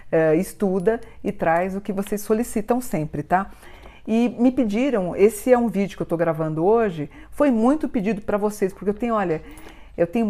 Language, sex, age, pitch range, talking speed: Portuguese, female, 50-69, 170-215 Hz, 190 wpm